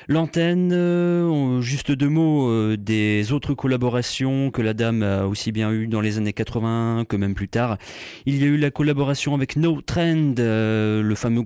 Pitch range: 115-150 Hz